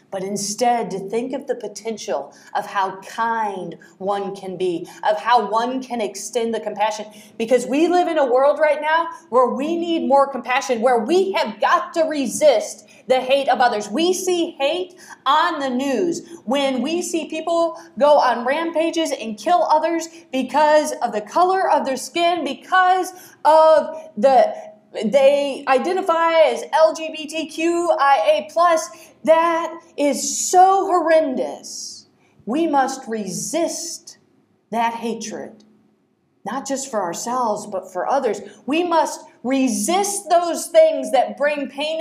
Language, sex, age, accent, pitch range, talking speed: English, female, 30-49, American, 245-330 Hz, 140 wpm